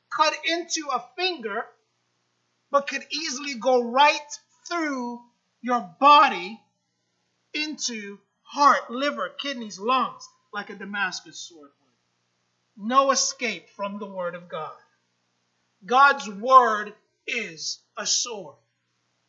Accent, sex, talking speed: American, male, 105 wpm